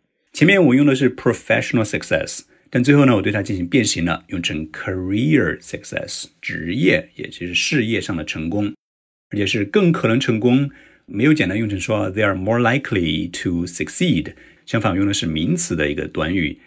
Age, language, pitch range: 50-69, Chinese, 85-125 Hz